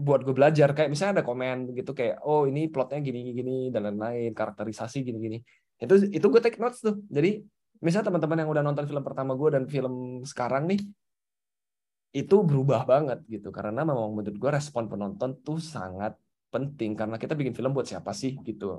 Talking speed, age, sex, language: 180 wpm, 20-39, male, Indonesian